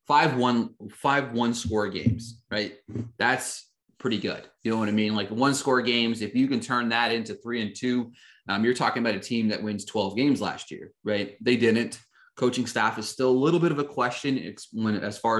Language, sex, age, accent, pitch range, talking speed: English, male, 30-49, American, 105-125 Hz, 220 wpm